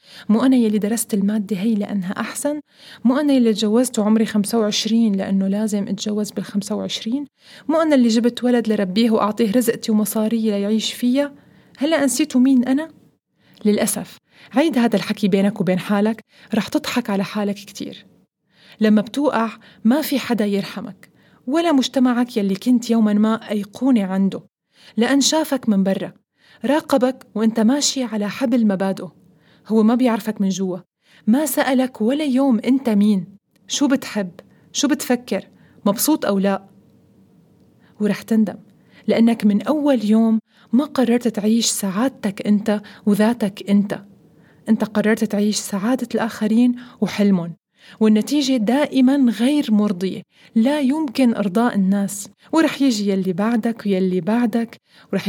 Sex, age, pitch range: female, 30-49, 205-250 Hz